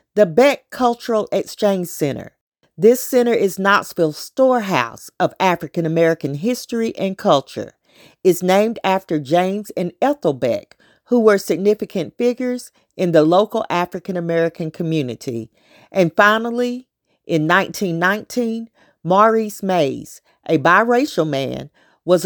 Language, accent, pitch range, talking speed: English, American, 160-210 Hz, 110 wpm